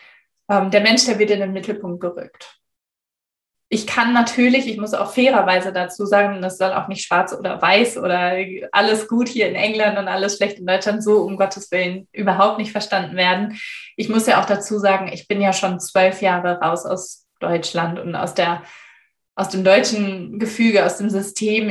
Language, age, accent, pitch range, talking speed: German, 20-39, German, 180-210 Hz, 190 wpm